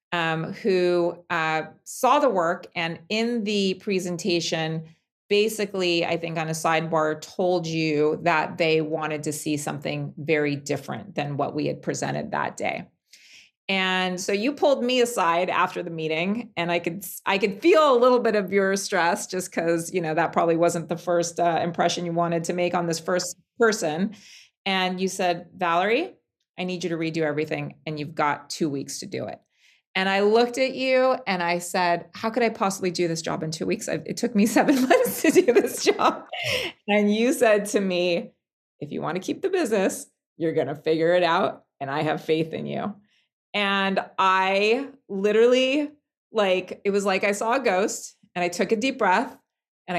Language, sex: English, female